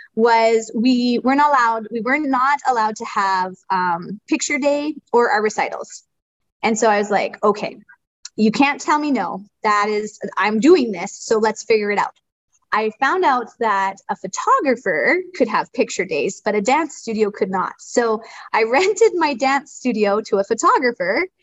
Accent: American